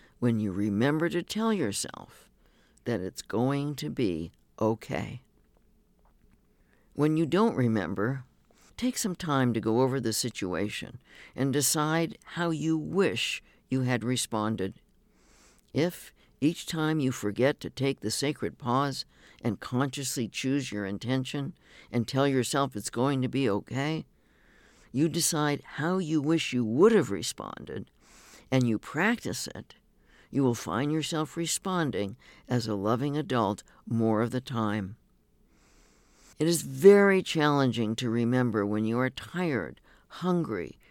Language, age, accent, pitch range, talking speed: English, 60-79, American, 110-155 Hz, 135 wpm